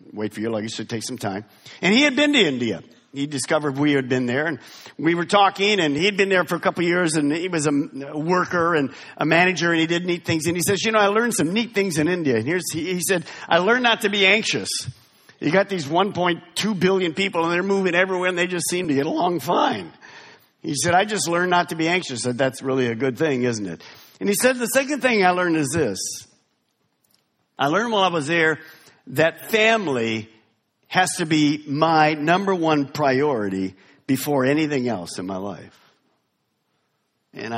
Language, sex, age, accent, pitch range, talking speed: English, male, 50-69, American, 120-180 Hz, 215 wpm